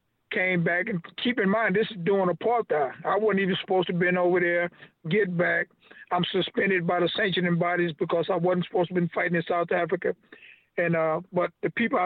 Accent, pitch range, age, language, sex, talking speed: American, 175-205 Hz, 50-69, English, male, 220 wpm